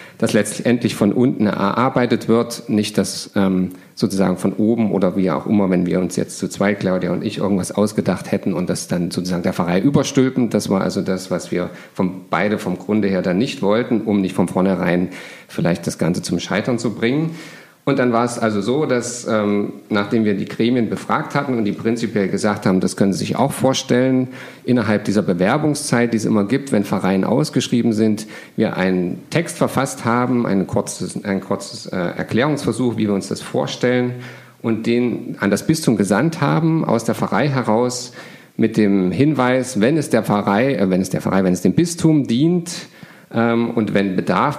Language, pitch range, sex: German, 95-125 Hz, male